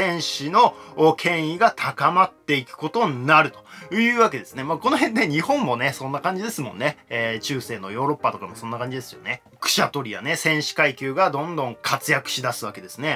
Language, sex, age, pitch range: Japanese, male, 20-39, 125-180 Hz